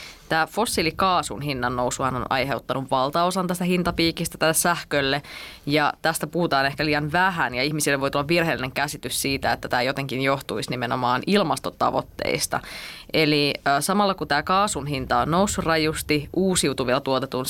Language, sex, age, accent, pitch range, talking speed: Finnish, female, 20-39, native, 135-165 Hz, 140 wpm